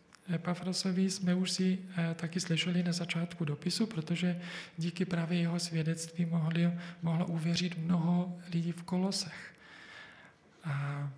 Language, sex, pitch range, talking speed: Czech, male, 155-175 Hz, 120 wpm